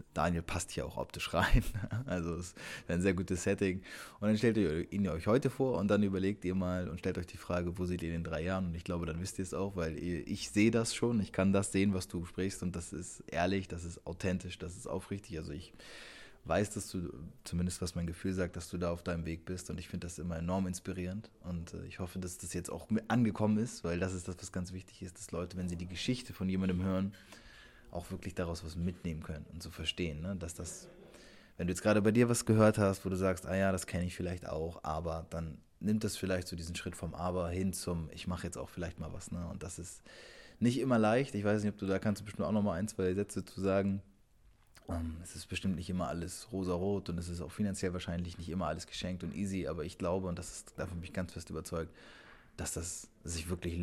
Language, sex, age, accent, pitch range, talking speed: English, male, 20-39, German, 85-100 Hz, 255 wpm